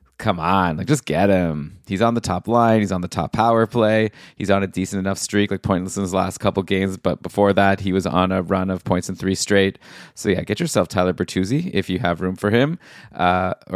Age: 20-39